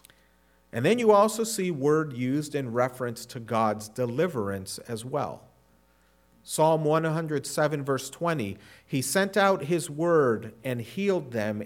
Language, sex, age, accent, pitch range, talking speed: English, male, 40-59, American, 105-155 Hz, 135 wpm